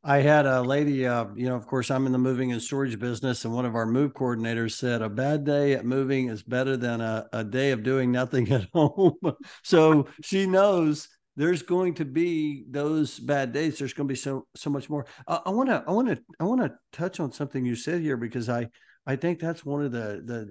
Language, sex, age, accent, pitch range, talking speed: English, male, 50-69, American, 125-155 Hz, 240 wpm